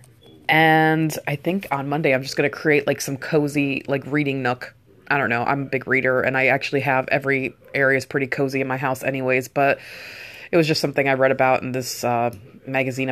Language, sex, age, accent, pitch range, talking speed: English, female, 20-39, American, 135-155 Hz, 220 wpm